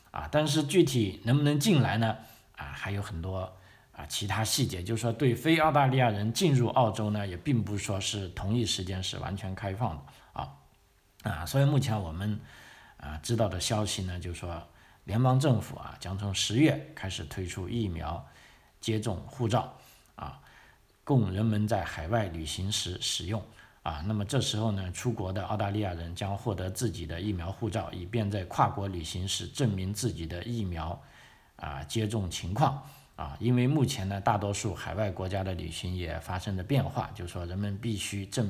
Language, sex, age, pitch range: Chinese, male, 50-69, 95-115 Hz